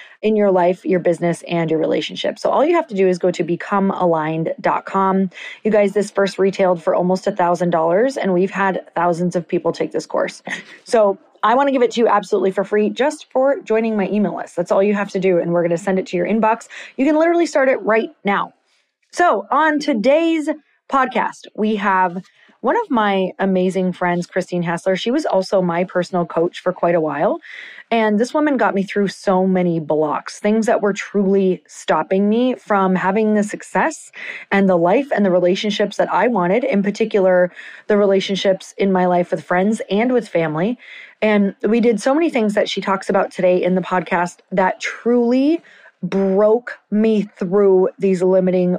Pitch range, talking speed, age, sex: 185-220 Hz, 195 wpm, 30-49, female